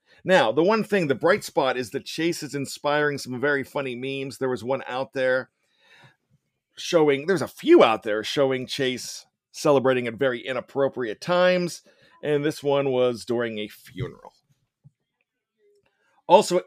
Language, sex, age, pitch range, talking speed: English, male, 40-59, 130-170 Hz, 150 wpm